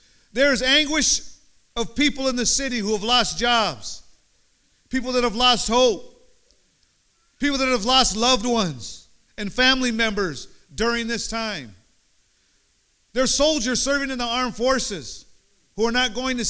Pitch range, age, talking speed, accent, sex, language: 200-250 Hz, 50-69, 155 wpm, American, male, English